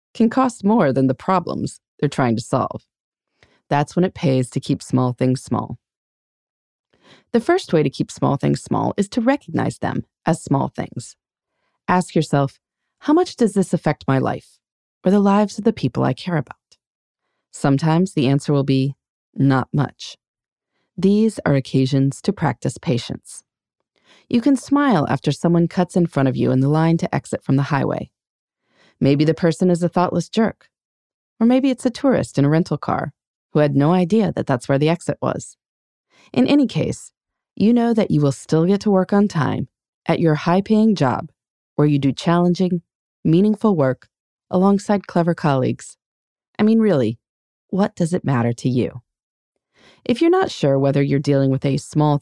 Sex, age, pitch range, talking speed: female, 30-49, 140-200 Hz, 180 wpm